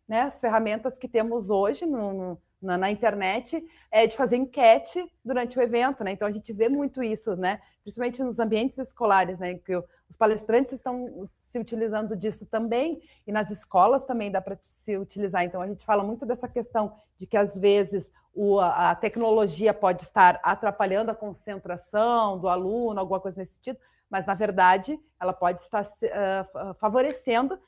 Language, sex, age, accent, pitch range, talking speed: Portuguese, female, 40-59, Brazilian, 190-235 Hz, 165 wpm